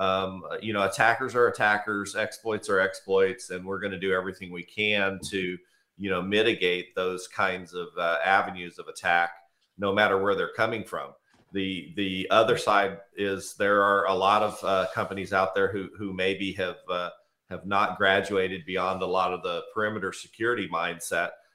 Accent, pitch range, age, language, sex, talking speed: American, 90-105 Hz, 40-59, English, male, 180 wpm